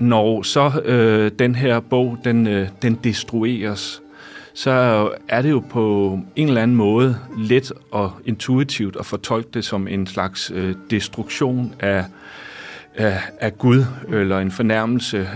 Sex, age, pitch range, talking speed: male, 40-59, 105-125 Hz, 145 wpm